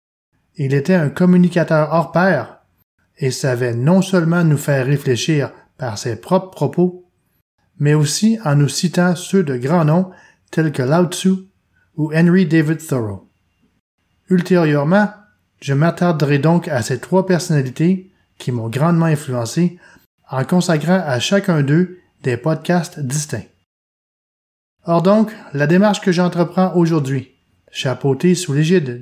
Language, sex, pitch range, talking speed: English, male, 130-180 Hz, 130 wpm